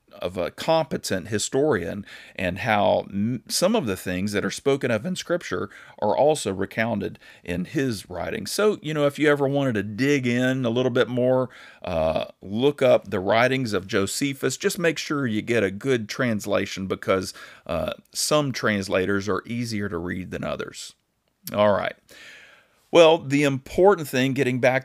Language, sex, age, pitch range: English, male, 40-59, 105-145 Hz